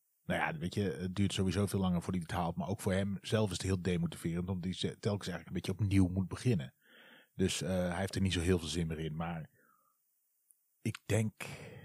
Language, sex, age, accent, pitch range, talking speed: Dutch, male, 40-59, Dutch, 90-120 Hz, 235 wpm